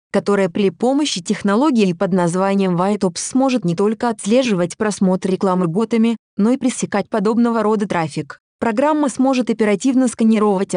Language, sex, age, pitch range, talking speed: Russian, female, 20-39, 185-235 Hz, 135 wpm